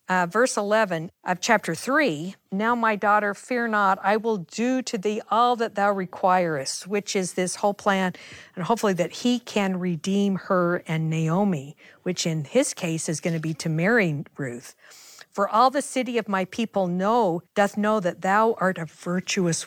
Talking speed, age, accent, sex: 185 wpm, 50-69, American, female